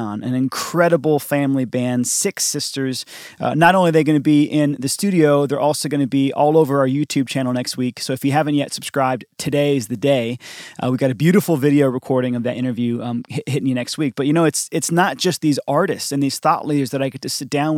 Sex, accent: male, American